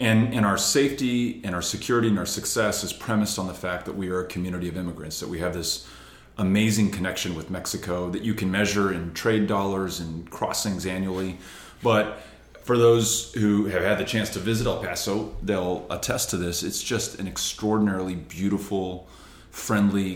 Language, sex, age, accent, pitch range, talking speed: English, male, 30-49, American, 90-105 Hz, 185 wpm